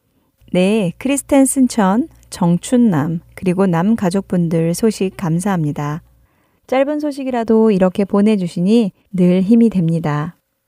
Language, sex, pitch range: Korean, female, 170-235 Hz